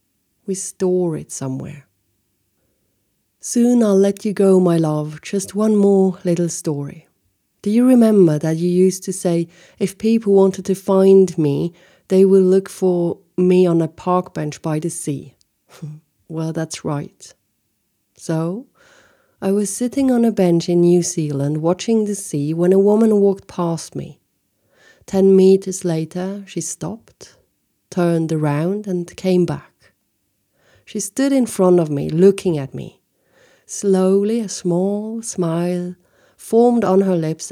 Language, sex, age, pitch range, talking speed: English, female, 40-59, 160-195 Hz, 145 wpm